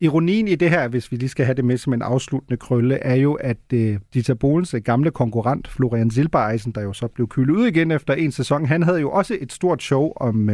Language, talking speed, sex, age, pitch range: Danish, 240 wpm, male, 30-49, 125-165 Hz